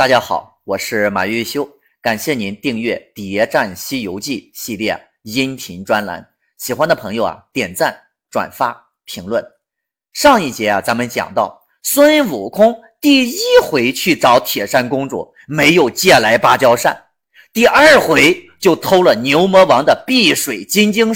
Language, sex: Chinese, male